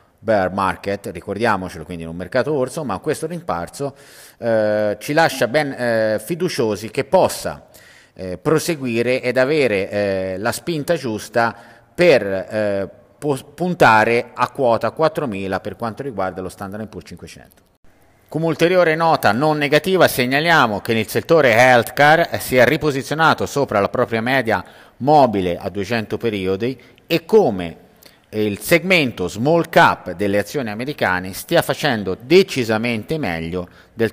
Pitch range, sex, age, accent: 100-135 Hz, male, 50-69, native